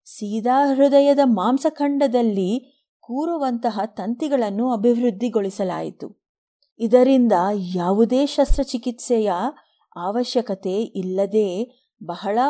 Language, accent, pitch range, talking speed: Kannada, native, 195-255 Hz, 60 wpm